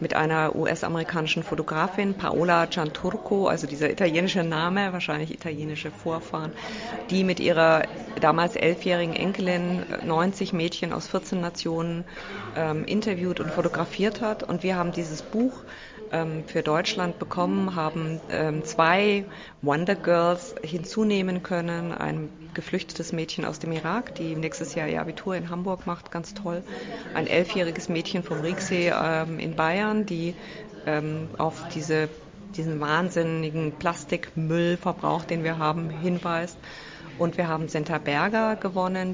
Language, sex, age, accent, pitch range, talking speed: German, female, 30-49, German, 160-185 Hz, 125 wpm